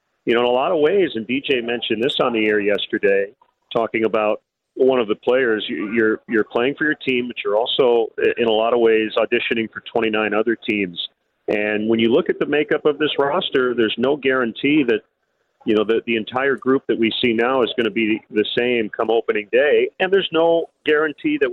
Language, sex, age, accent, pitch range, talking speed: English, male, 40-59, American, 110-145 Hz, 215 wpm